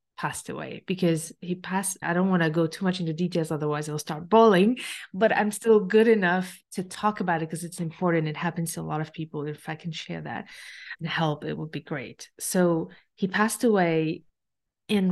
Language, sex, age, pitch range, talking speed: English, female, 30-49, 165-210 Hz, 215 wpm